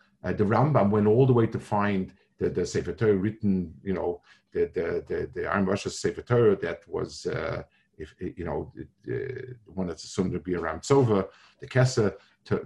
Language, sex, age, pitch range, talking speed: English, male, 50-69, 95-130 Hz, 195 wpm